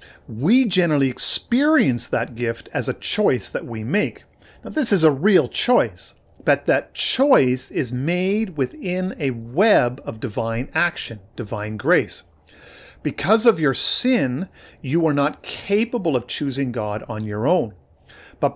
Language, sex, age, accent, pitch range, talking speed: English, male, 50-69, American, 120-175 Hz, 145 wpm